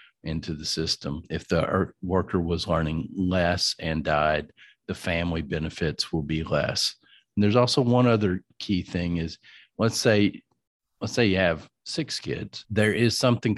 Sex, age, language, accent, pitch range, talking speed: male, 50-69, English, American, 80-105 Hz, 160 wpm